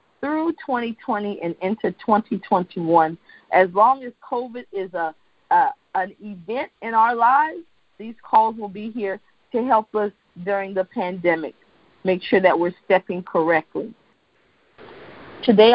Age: 40-59